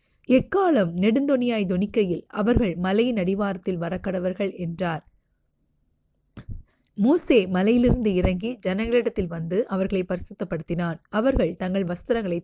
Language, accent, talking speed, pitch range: Tamil, native, 85 wpm, 175-220 Hz